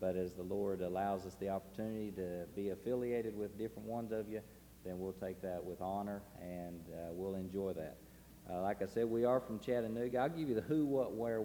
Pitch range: 95-115 Hz